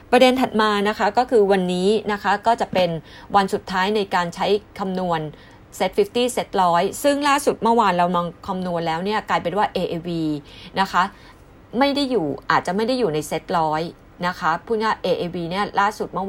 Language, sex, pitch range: Thai, female, 165-210 Hz